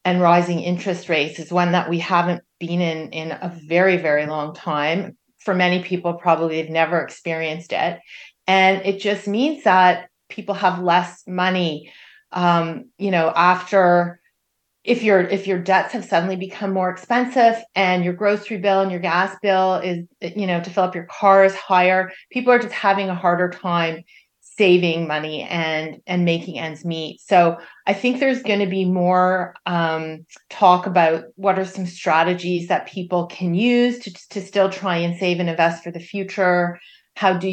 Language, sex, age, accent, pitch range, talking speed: English, female, 30-49, American, 170-195 Hz, 180 wpm